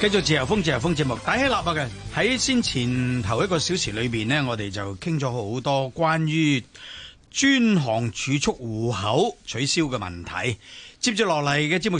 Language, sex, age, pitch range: Chinese, male, 30-49, 125-190 Hz